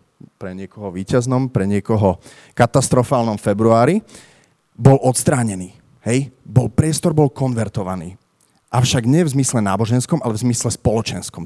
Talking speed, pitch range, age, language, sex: 120 wpm, 110-145 Hz, 30-49, Slovak, male